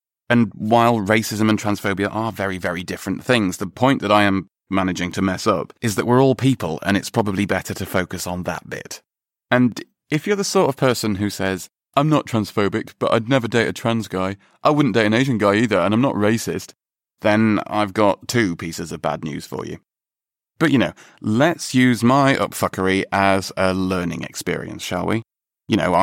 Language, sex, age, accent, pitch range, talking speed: English, male, 30-49, British, 95-115 Hz, 205 wpm